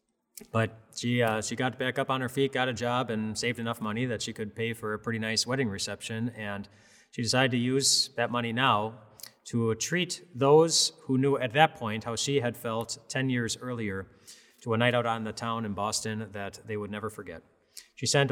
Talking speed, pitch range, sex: 215 wpm, 100-125 Hz, male